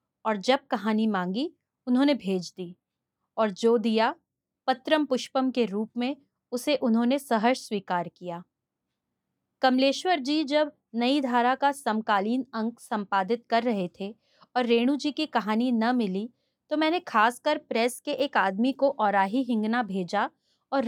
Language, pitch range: Hindi, 215-265 Hz